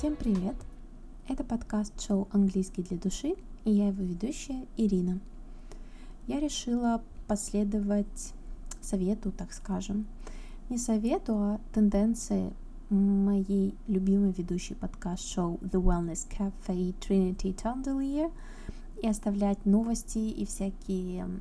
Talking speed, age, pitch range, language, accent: 100 wpm, 20-39, 190-225 Hz, Russian, native